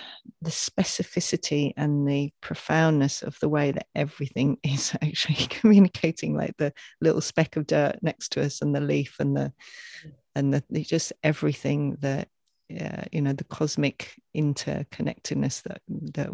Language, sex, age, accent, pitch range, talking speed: English, female, 40-59, British, 140-160 Hz, 145 wpm